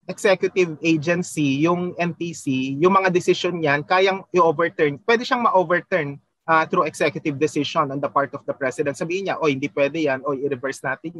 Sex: male